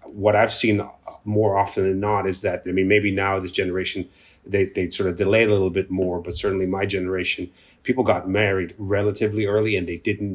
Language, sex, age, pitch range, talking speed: English, male, 30-49, 95-110 Hz, 210 wpm